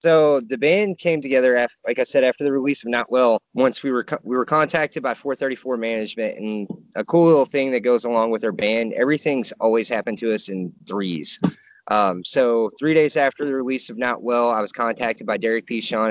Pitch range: 115-135 Hz